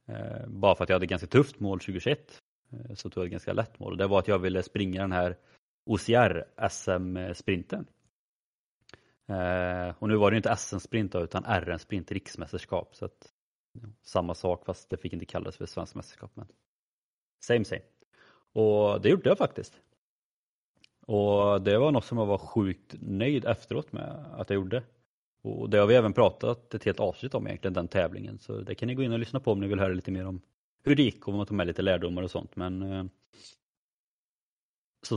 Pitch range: 95-115 Hz